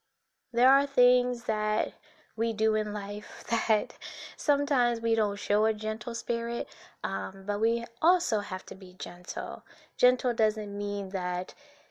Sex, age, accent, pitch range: female, 10-29, American, 195-225 Hz